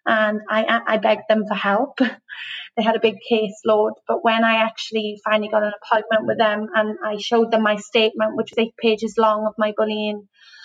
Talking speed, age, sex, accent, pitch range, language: 205 wpm, 20-39, female, British, 215-235 Hz, English